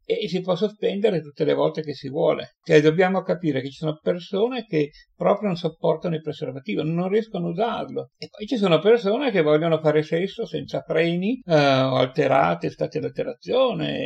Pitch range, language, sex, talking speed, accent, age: 155-210 Hz, Italian, male, 185 wpm, native, 60-79